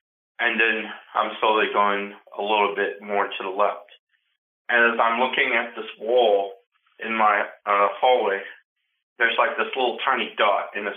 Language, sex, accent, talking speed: English, male, American, 170 wpm